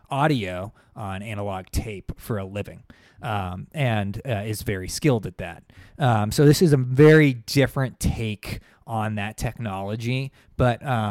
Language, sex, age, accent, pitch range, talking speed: English, male, 20-39, American, 105-135 Hz, 145 wpm